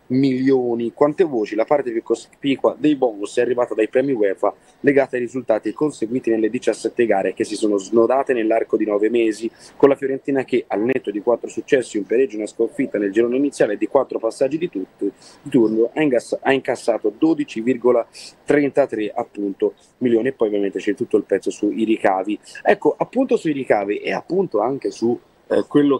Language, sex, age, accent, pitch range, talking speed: Italian, male, 30-49, native, 115-145 Hz, 175 wpm